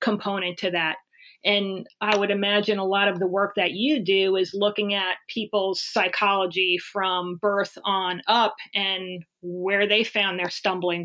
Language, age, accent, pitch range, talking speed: English, 40-59, American, 195-230 Hz, 165 wpm